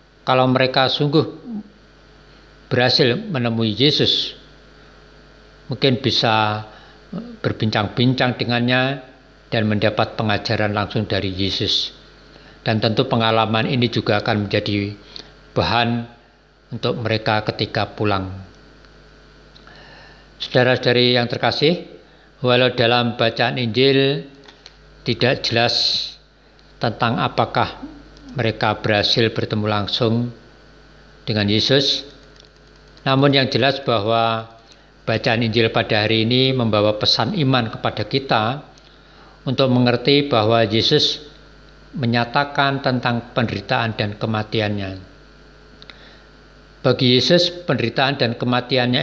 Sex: male